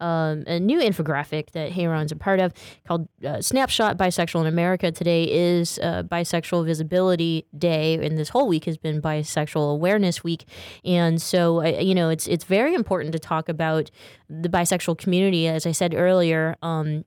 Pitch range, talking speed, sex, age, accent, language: 160-185 Hz, 180 wpm, female, 20-39, American, English